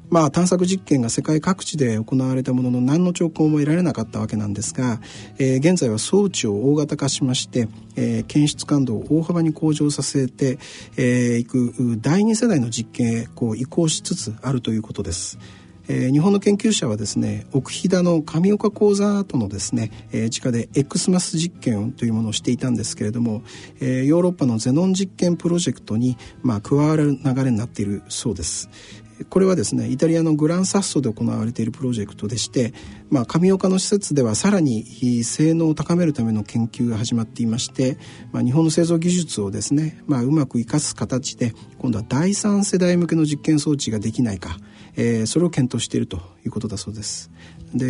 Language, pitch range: Japanese, 110-160 Hz